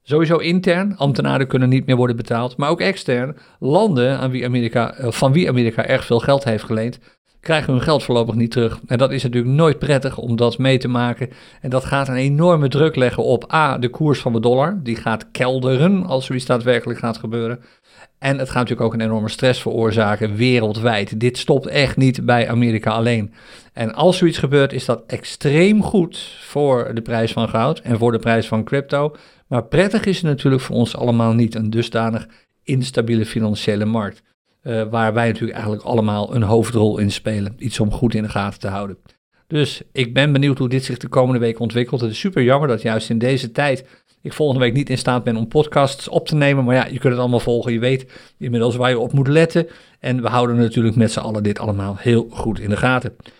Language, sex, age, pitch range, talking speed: Dutch, male, 50-69, 115-140 Hz, 210 wpm